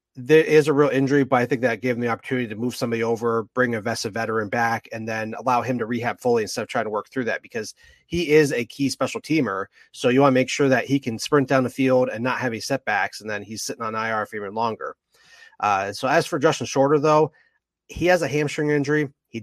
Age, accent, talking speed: 30-49, American, 255 wpm